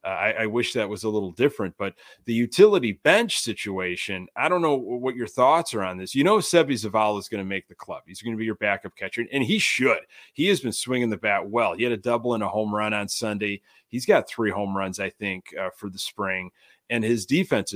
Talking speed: 250 wpm